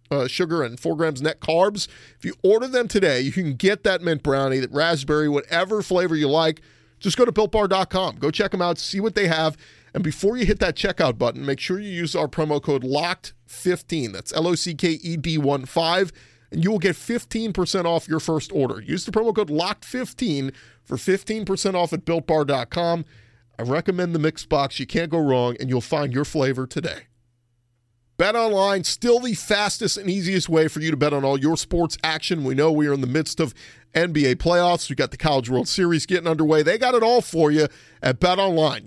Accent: American